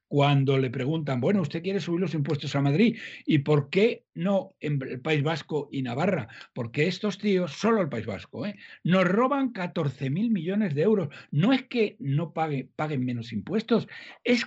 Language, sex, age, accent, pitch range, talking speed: Spanish, male, 60-79, Spanish, 130-200 Hz, 185 wpm